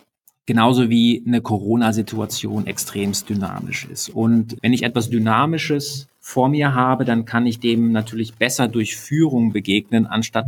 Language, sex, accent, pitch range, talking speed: German, male, German, 110-135 Hz, 145 wpm